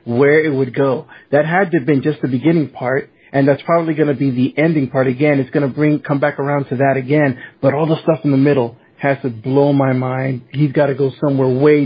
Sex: male